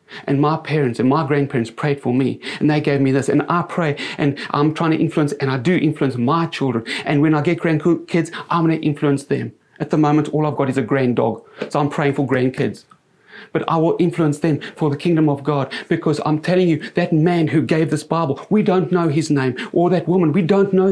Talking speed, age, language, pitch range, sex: 240 wpm, 30-49, English, 145-180 Hz, male